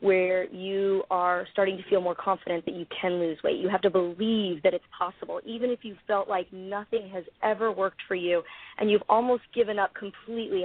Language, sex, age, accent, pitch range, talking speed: English, female, 30-49, American, 180-205 Hz, 210 wpm